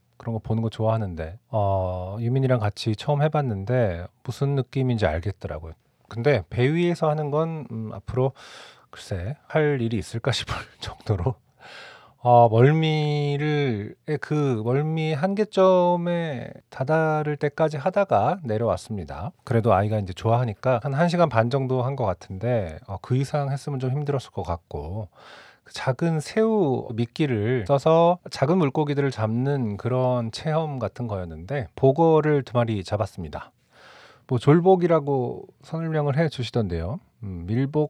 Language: Korean